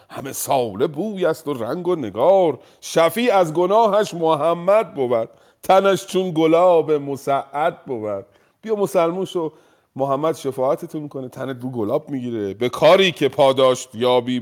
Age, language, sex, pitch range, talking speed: 50-69, Persian, male, 130-190 Hz, 130 wpm